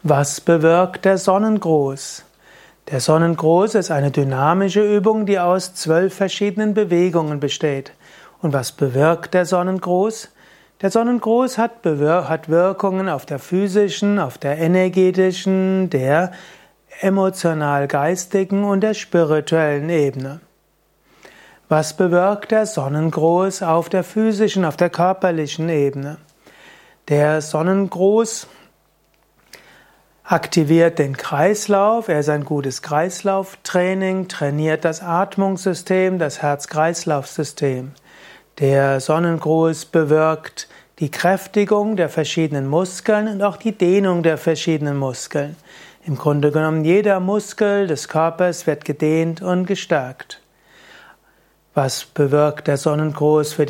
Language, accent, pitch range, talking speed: German, German, 150-195 Hz, 110 wpm